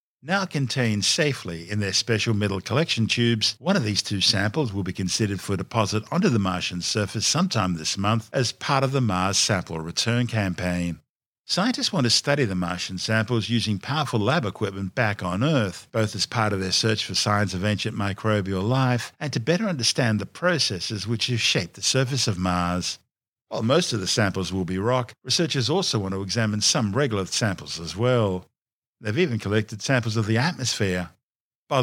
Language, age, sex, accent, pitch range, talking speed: English, 50-69, male, Australian, 95-130 Hz, 185 wpm